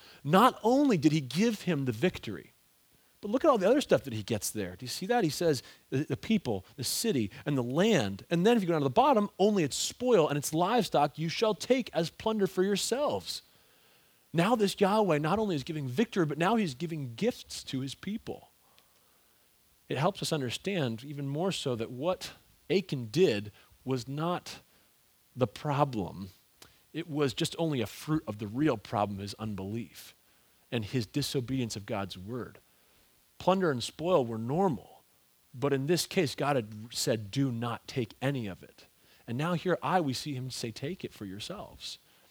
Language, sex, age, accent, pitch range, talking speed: English, male, 30-49, American, 115-175 Hz, 190 wpm